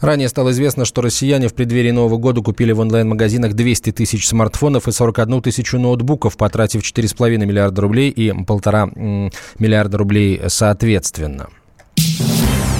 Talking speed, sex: 130 wpm, male